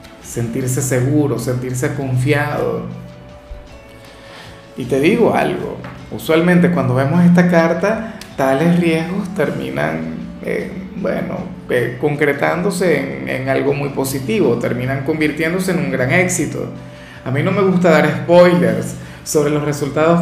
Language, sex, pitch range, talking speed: Spanish, male, 135-175 Hz, 120 wpm